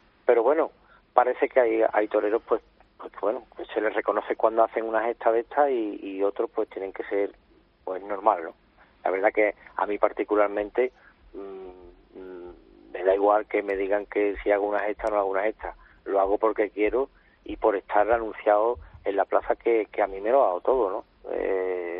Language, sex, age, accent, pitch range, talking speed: Spanish, male, 40-59, Spanish, 95-110 Hz, 200 wpm